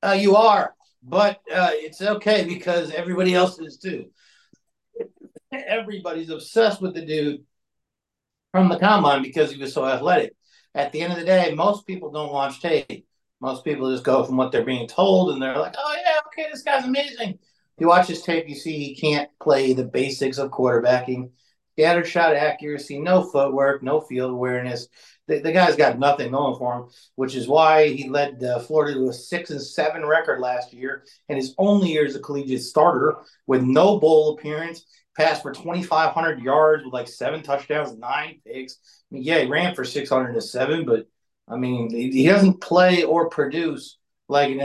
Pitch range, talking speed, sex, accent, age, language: 135-180 Hz, 185 wpm, male, American, 50-69, English